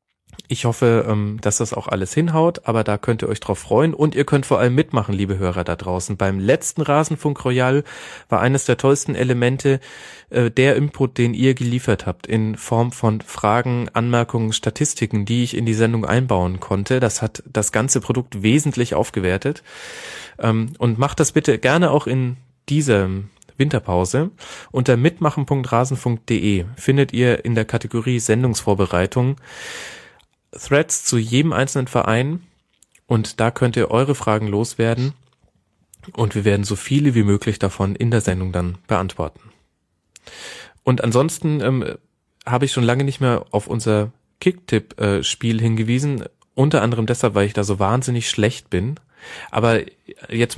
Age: 30-49